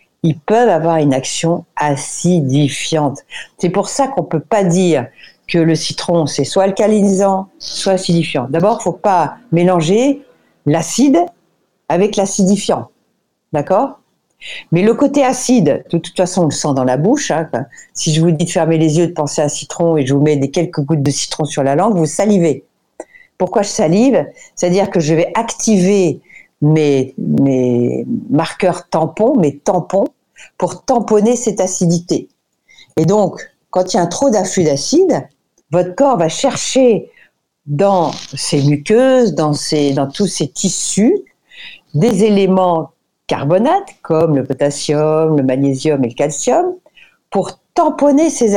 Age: 50-69